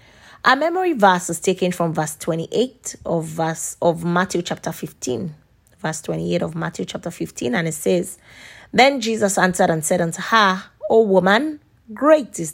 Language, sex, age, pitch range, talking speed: English, female, 20-39, 165-215 Hz, 165 wpm